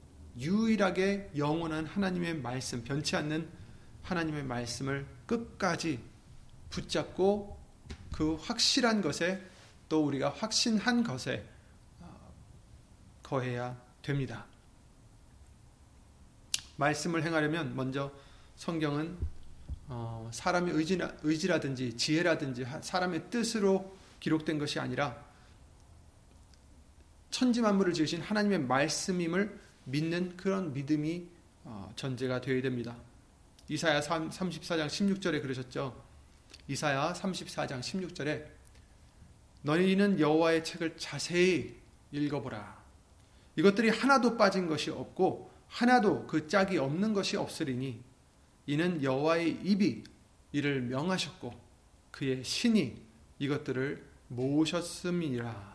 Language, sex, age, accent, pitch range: Korean, male, 30-49, native, 125-180 Hz